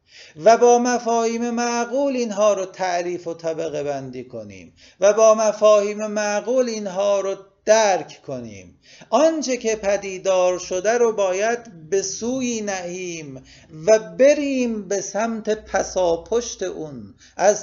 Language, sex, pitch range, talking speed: Persian, male, 140-220 Hz, 120 wpm